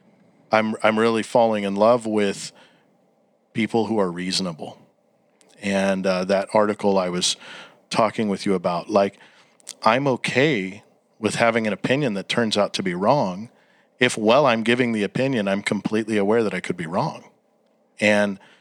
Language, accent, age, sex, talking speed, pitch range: English, American, 40-59, male, 160 wpm, 105-125 Hz